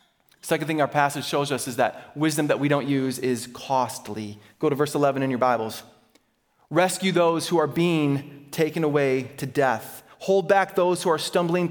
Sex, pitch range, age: male, 140-195 Hz, 30-49